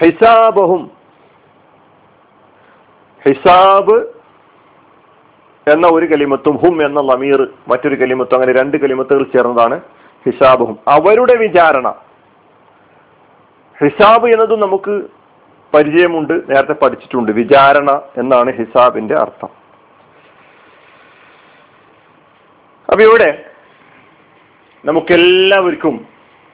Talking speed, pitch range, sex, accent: 70 wpm, 140-195 Hz, male, native